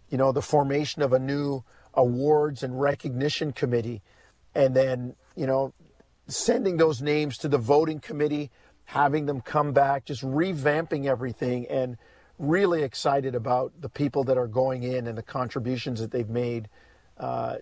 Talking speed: 155 wpm